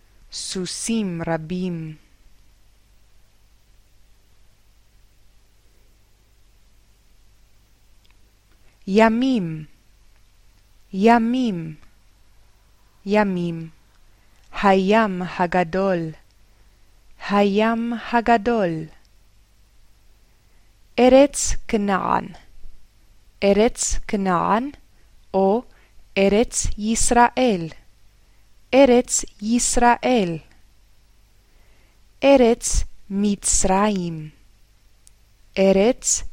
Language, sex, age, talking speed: Hebrew, female, 20-39, 35 wpm